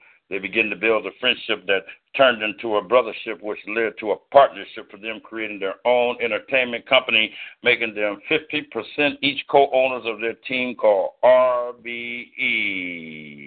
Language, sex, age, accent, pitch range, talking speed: English, male, 60-79, American, 120-140 Hz, 150 wpm